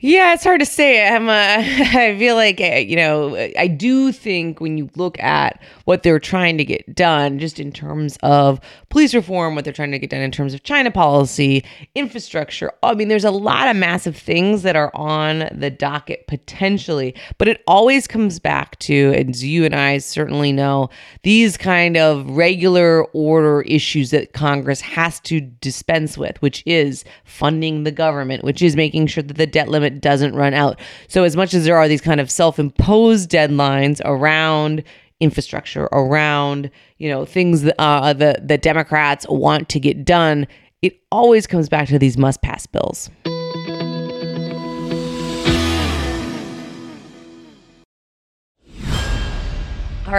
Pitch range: 140-180 Hz